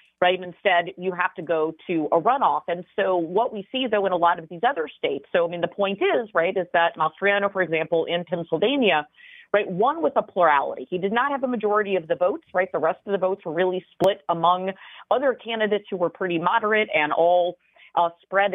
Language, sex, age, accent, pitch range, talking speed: English, female, 40-59, American, 165-200 Hz, 225 wpm